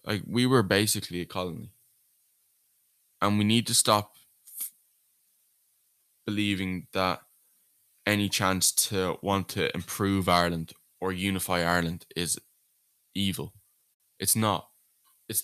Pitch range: 95-110 Hz